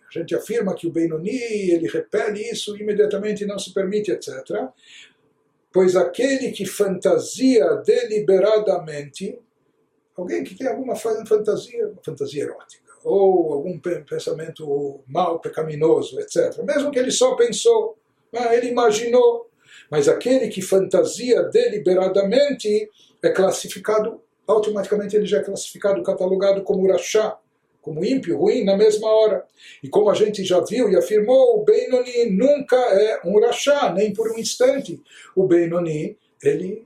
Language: Portuguese